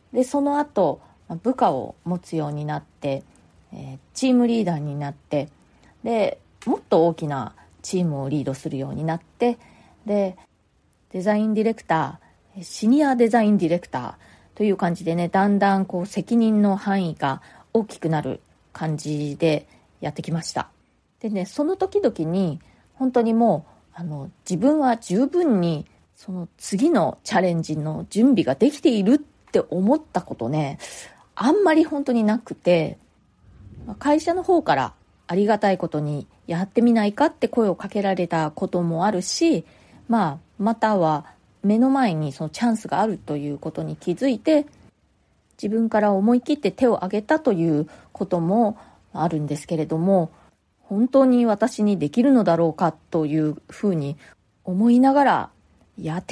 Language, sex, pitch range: Japanese, female, 160-235 Hz